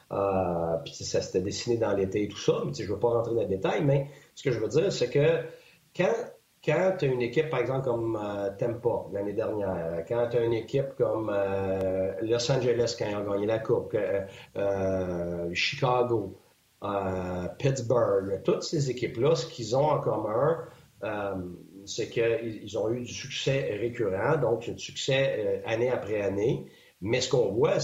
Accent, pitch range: Canadian, 100-140 Hz